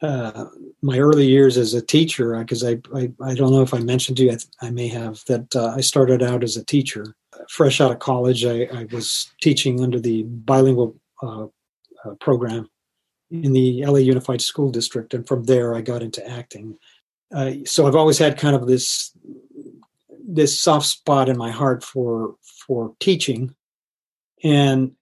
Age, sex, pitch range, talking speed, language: 40-59, male, 120-140 Hz, 185 wpm, English